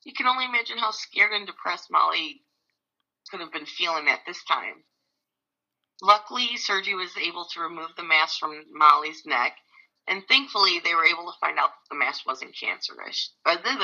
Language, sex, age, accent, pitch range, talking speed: English, female, 40-59, American, 160-235 Hz, 175 wpm